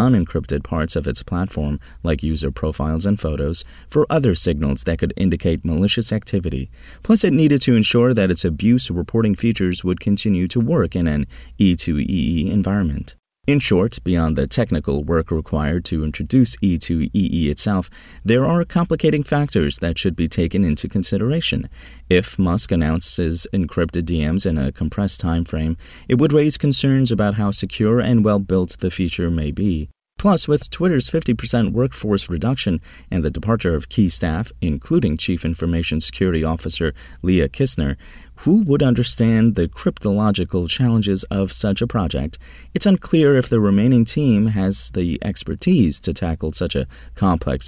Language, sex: English, male